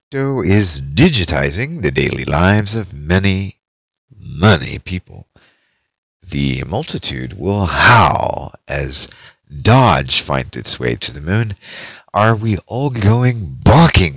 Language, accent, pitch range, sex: English, American, 75-100 Hz, male